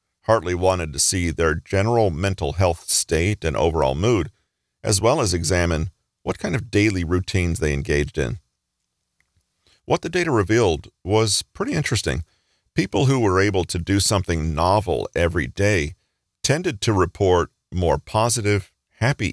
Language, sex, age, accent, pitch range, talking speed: English, male, 40-59, American, 80-105 Hz, 145 wpm